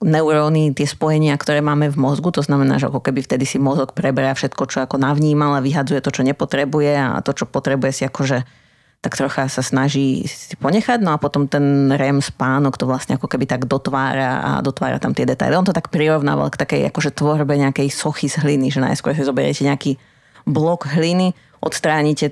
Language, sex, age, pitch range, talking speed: Slovak, female, 30-49, 140-160 Hz, 200 wpm